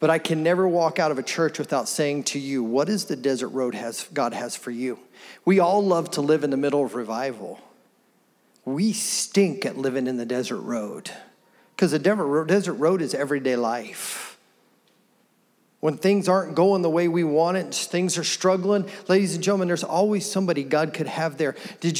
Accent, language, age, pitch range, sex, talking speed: American, English, 40-59, 165-220 Hz, male, 195 wpm